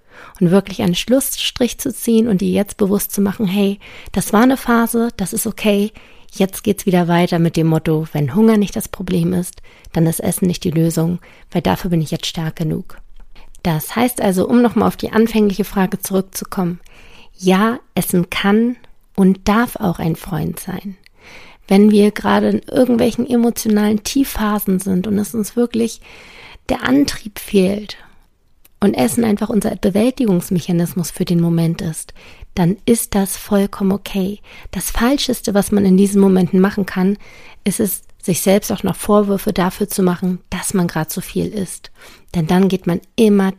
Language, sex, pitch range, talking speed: German, female, 180-215 Hz, 170 wpm